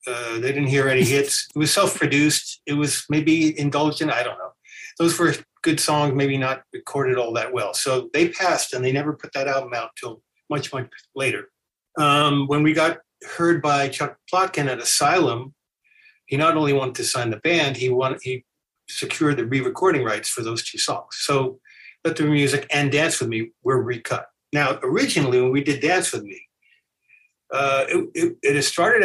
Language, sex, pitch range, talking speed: English, male, 125-150 Hz, 190 wpm